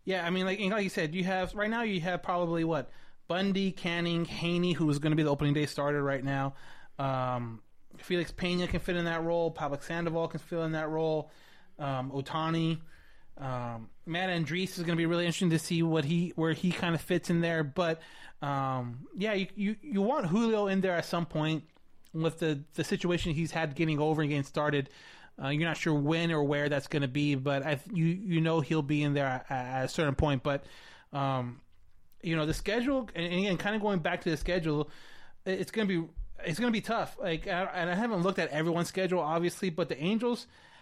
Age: 30-49